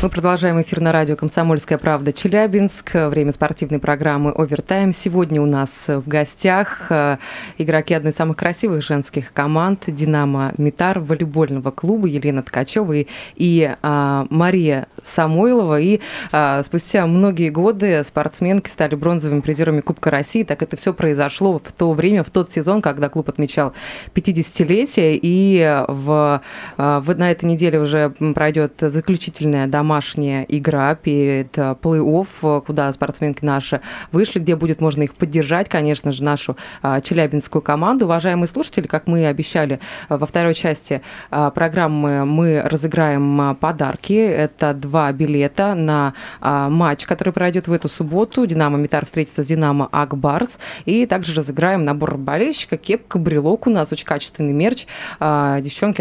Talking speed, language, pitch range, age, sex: 145 wpm, Russian, 145-180 Hz, 20-39, female